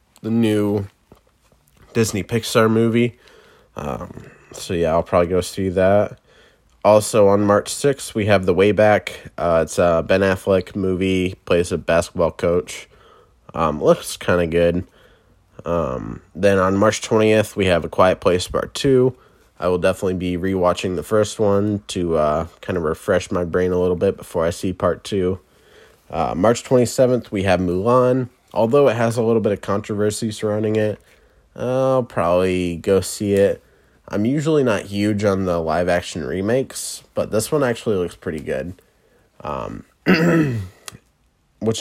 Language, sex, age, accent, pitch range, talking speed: English, male, 20-39, American, 90-115 Hz, 160 wpm